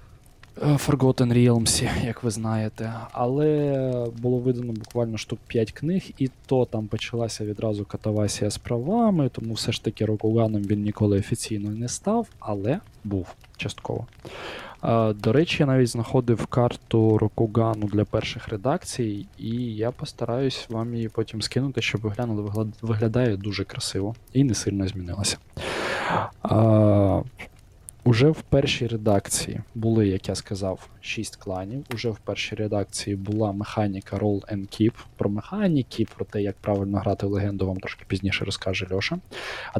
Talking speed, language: 145 wpm, Ukrainian